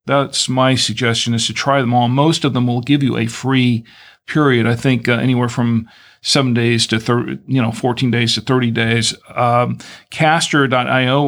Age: 50-69